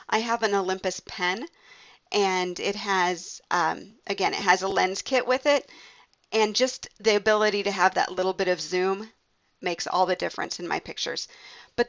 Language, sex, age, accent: English, female, 40-59, American